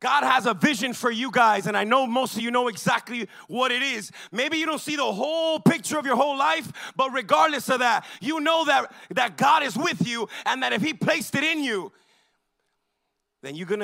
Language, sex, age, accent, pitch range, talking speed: English, male, 30-49, American, 190-250 Hz, 225 wpm